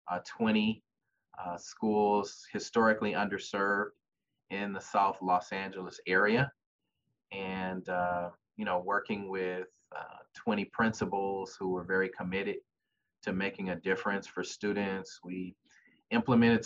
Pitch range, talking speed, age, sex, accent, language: 95-110 Hz, 120 wpm, 30-49, male, American, English